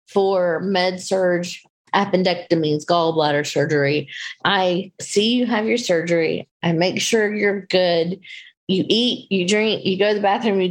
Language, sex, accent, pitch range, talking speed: English, female, American, 175-205 Hz, 150 wpm